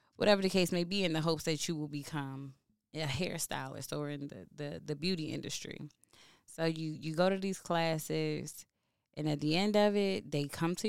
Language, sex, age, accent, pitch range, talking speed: English, female, 20-39, American, 140-175 Hz, 205 wpm